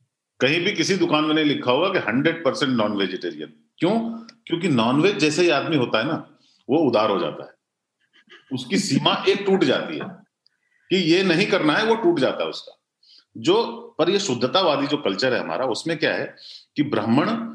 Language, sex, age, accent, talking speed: Hindi, male, 40-59, native, 180 wpm